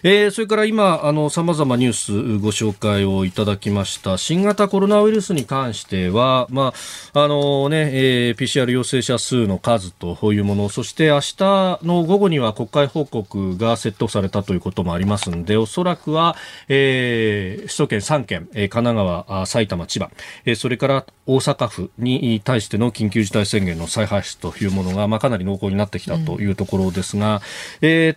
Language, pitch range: Japanese, 105-155 Hz